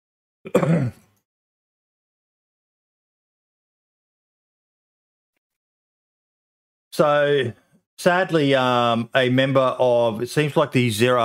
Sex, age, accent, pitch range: male, 30-49, Australian, 105-125 Hz